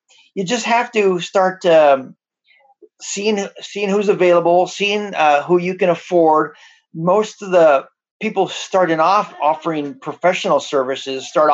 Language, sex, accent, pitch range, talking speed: English, male, American, 135-185 Hz, 135 wpm